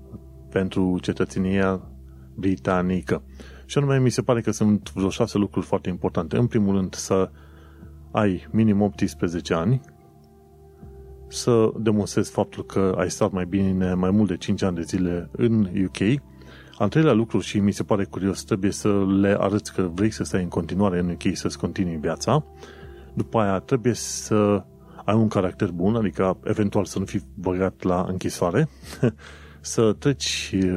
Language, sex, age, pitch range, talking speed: Romanian, male, 30-49, 85-110 Hz, 160 wpm